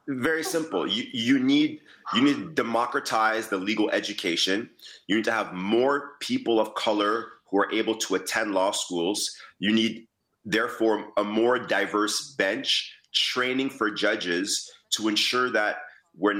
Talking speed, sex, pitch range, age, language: 150 wpm, male, 105-125 Hz, 30-49, English